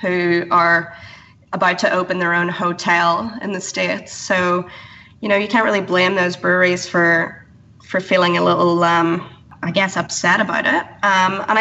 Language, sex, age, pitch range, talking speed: English, female, 20-39, 170-200 Hz, 170 wpm